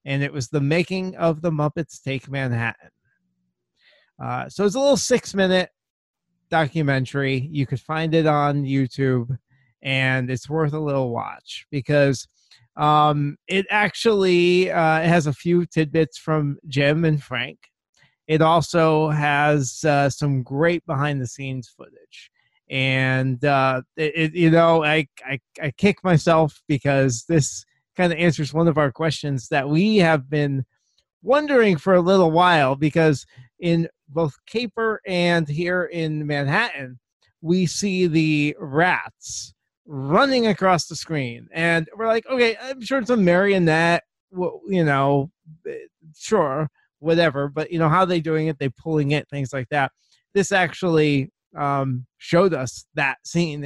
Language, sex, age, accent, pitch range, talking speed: English, male, 30-49, American, 140-175 Hz, 145 wpm